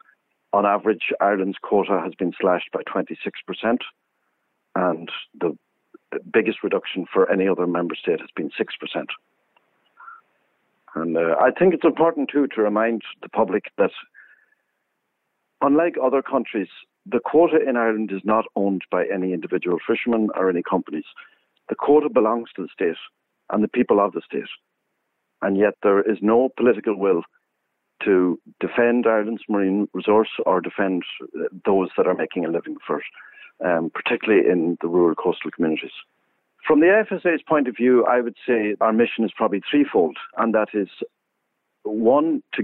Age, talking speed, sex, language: 60-79, 155 wpm, male, English